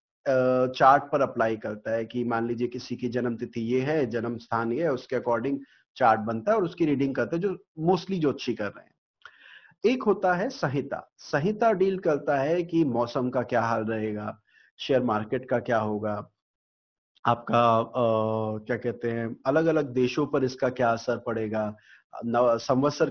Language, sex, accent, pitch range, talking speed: Hindi, male, native, 115-145 Hz, 170 wpm